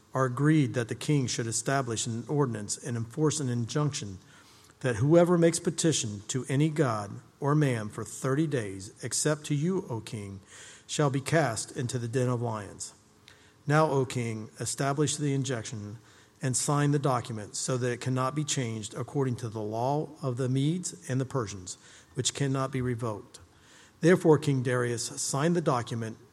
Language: English